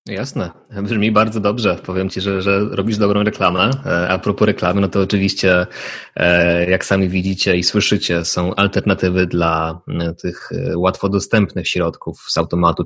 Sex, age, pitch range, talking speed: male, 20-39, 90-105 Hz, 145 wpm